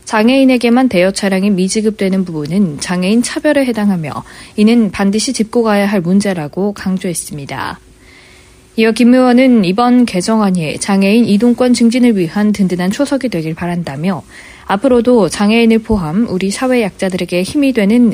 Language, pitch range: Korean, 185-230 Hz